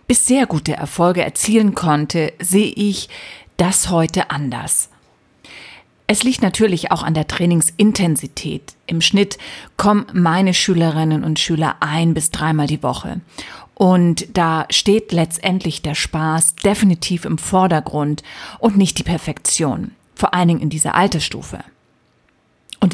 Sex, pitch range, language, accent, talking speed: female, 160-200 Hz, German, German, 130 wpm